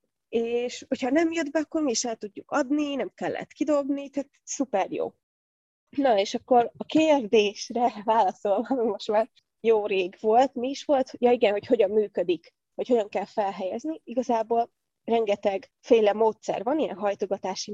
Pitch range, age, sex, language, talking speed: 200-250 Hz, 20-39, female, Hungarian, 160 wpm